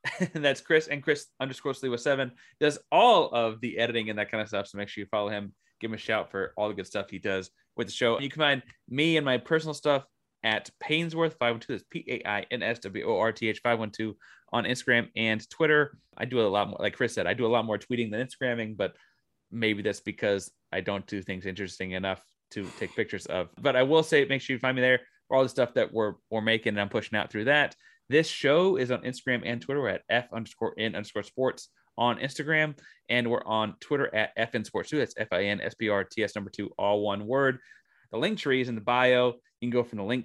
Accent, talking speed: American, 260 wpm